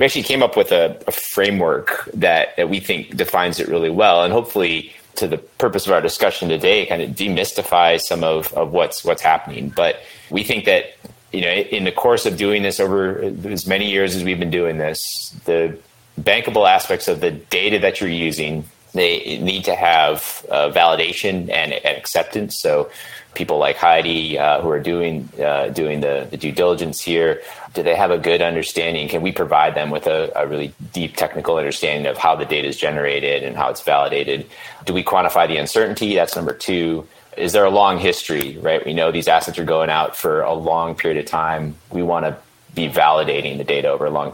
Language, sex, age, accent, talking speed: English, male, 30-49, American, 205 wpm